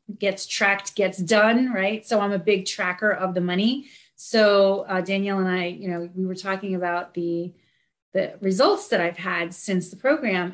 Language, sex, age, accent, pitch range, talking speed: English, female, 30-49, American, 185-215 Hz, 190 wpm